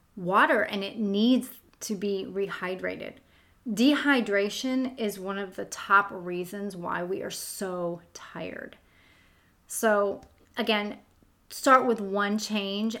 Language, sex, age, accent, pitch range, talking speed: English, female, 30-49, American, 195-240 Hz, 115 wpm